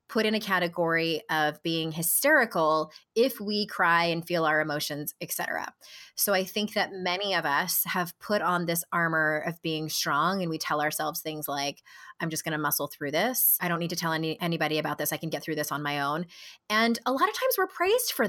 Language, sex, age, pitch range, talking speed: English, female, 20-39, 165-235 Hz, 225 wpm